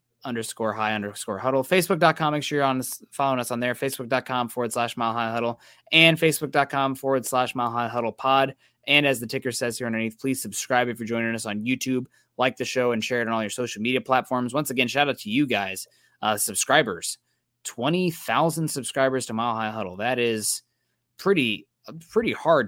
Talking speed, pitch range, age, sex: 200 wpm, 110-135 Hz, 20-39, male